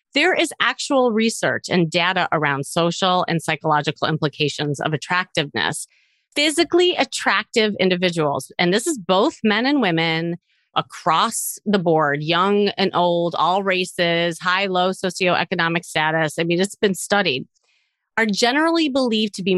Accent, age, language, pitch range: American, 30-49, English, 175-250 Hz